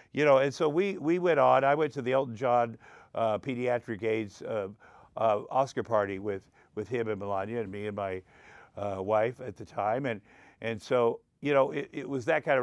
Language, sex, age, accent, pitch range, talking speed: English, male, 50-69, American, 120-150 Hz, 220 wpm